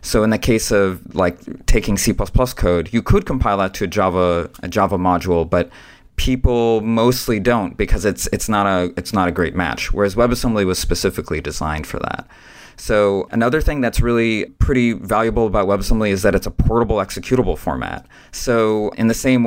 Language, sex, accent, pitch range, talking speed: English, male, American, 95-115 Hz, 185 wpm